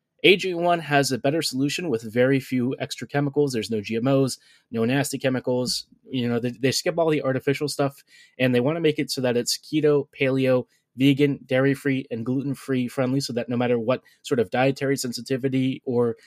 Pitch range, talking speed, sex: 125-145 Hz, 190 wpm, male